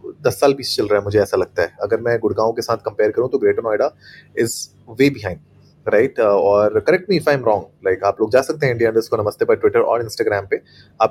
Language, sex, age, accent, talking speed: Hindi, male, 30-49, native, 250 wpm